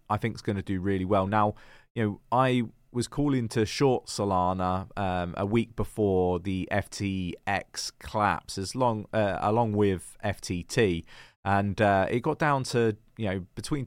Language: English